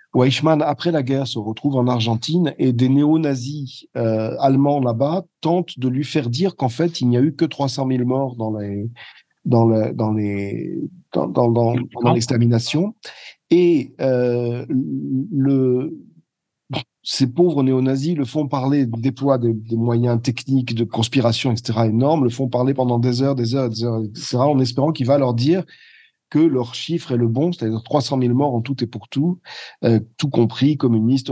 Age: 40-59